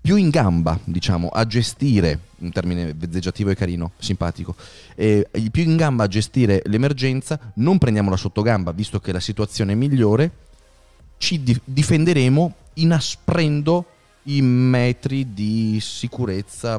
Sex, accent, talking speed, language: male, native, 130 wpm, Italian